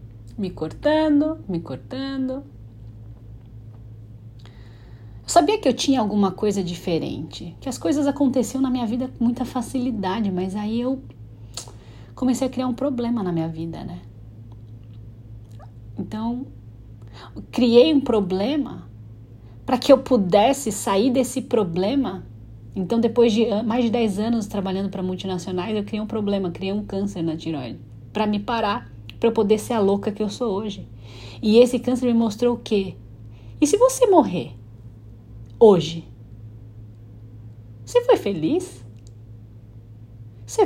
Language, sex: Portuguese, female